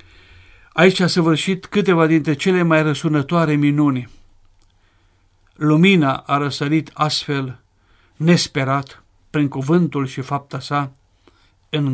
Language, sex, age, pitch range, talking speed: Romanian, male, 50-69, 115-155 Hz, 100 wpm